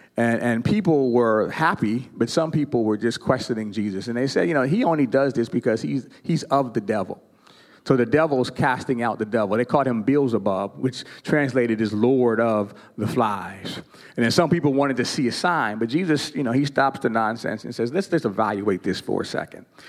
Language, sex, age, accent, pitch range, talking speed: English, male, 40-59, American, 120-175 Hz, 215 wpm